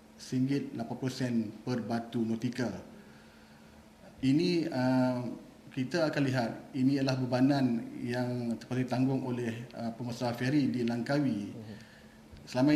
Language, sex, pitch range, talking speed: Malay, male, 120-145 Hz, 100 wpm